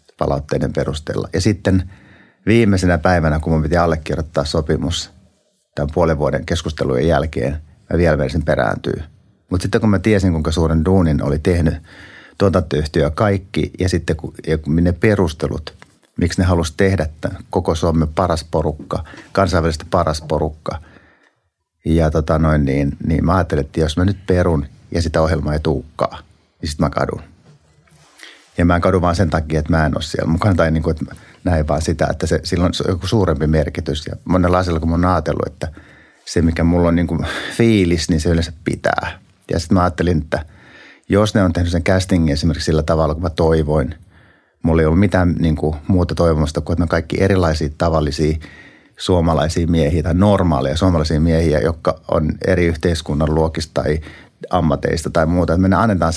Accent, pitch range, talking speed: native, 80-90 Hz, 180 wpm